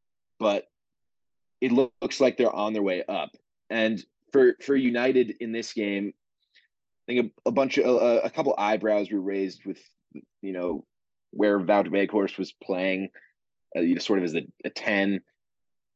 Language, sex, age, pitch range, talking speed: English, male, 20-39, 95-120 Hz, 170 wpm